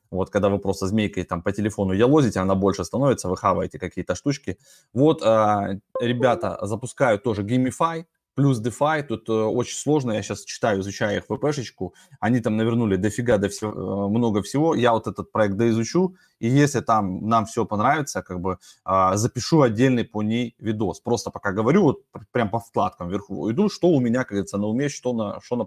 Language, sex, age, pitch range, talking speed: Russian, male, 20-39, 100-125 Hz, 190 wpm